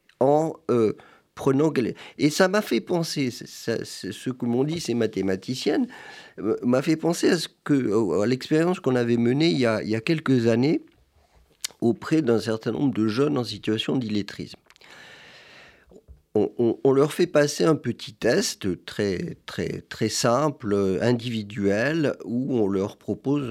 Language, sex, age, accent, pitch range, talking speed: French, male, 50-69, French, 105-145 Hz, 160 wpm